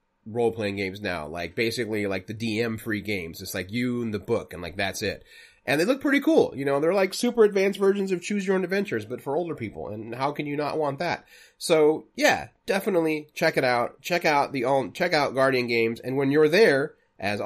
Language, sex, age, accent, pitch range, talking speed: English, male, 30-49, American, 115-165 Hz, 230 wpm